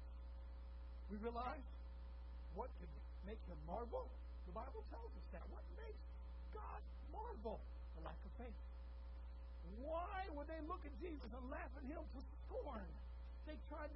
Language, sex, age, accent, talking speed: English, male, 50-69, American, 145 wpm